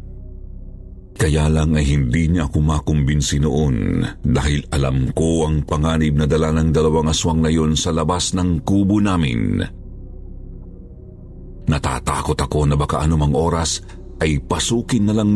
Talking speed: 135 wpm